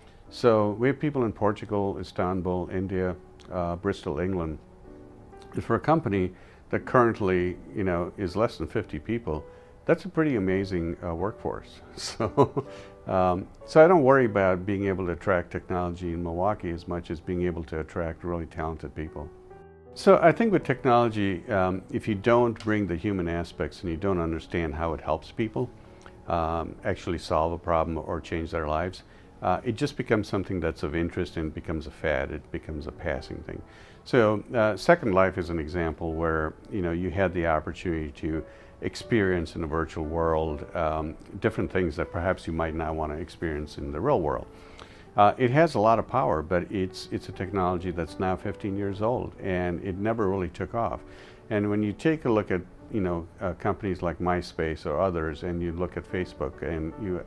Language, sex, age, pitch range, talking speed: English, male, 50-69, 85-105 Hz, 190 wpm